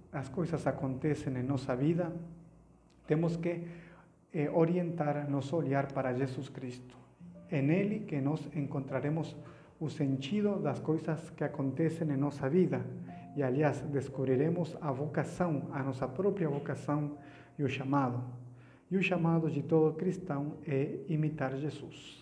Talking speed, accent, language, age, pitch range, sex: 130 wpm, Mexican, Portuguese, 50-69, 135-165 Hz, male